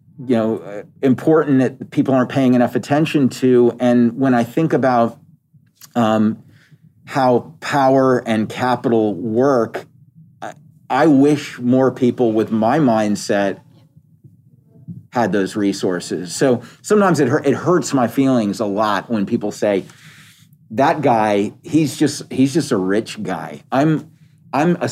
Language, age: English, 40-59